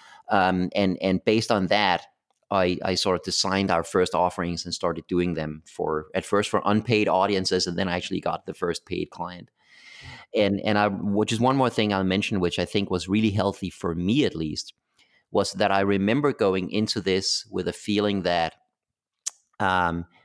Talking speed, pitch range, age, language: 195 wpm, 90-105 Hz, 30-49, English